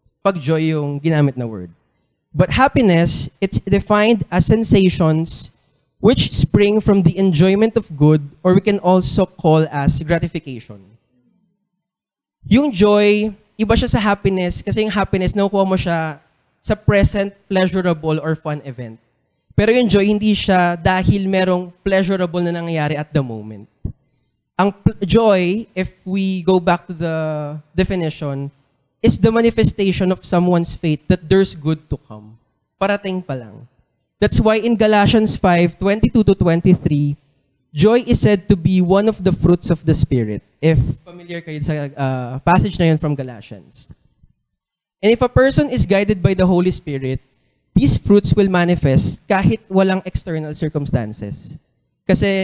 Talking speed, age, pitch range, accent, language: 145 wpm, 20-39, 145-195 Hz, Filipino, English